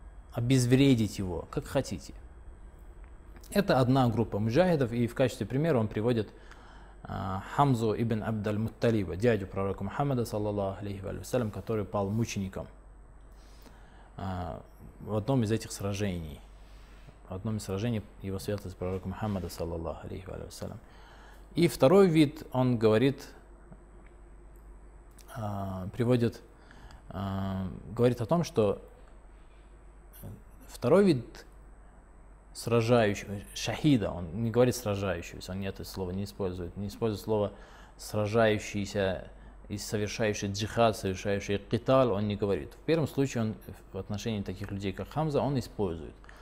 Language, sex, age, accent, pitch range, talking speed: Russian, male, 20-39, native, 95-125 Hz, 105 wpm